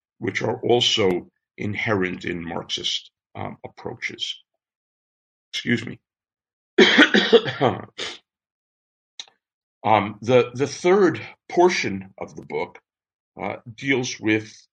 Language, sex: English, male